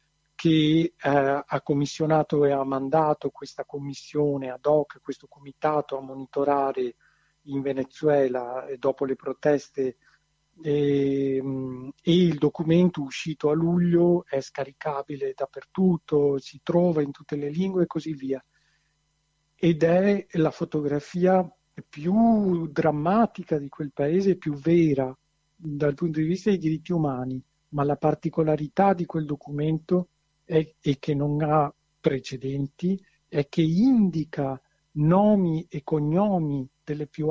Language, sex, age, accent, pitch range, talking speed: Italian, male, 50-69, native, 140-165 Hz, 120 wpm